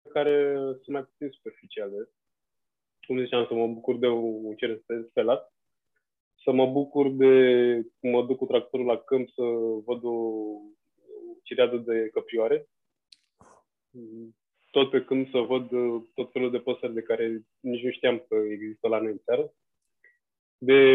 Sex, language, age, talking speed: male, Romanian, 20-39, 145 wpm